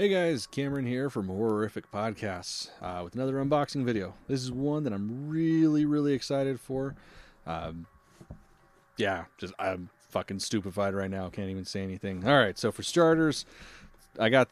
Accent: American